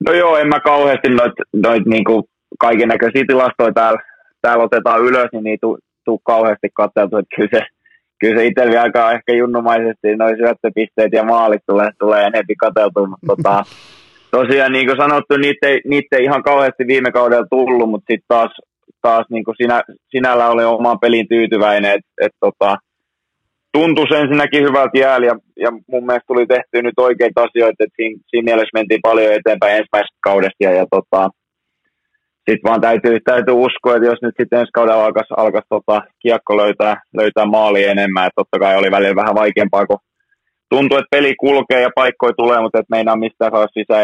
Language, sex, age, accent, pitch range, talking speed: Finnish, male, 20-39, native, 105-125 Hz, 170 wpm